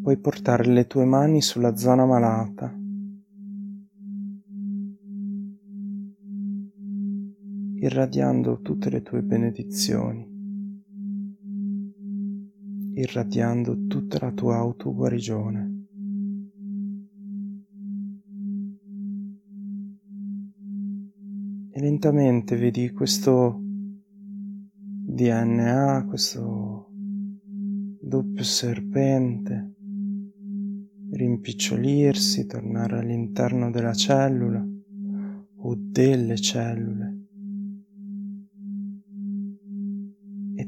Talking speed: 50 wpm